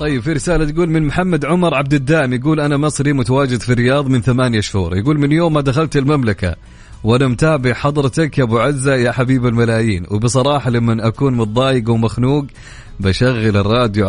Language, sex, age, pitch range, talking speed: English, male, 30-49, 110-145 Hz, 170 wpm